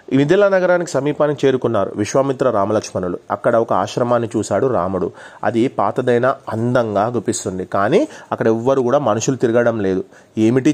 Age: 30-49